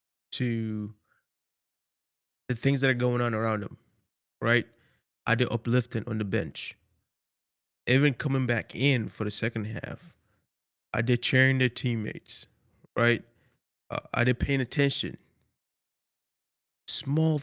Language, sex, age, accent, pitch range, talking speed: English, male, 20-39, American, 115-135 Hz, 125 wpm